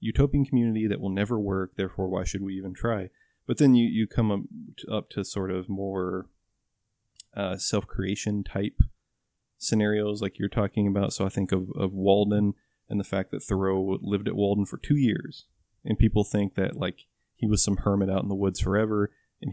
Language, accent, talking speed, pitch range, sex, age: English, American, 195 wpm, 95-105 Hz, male, 20-39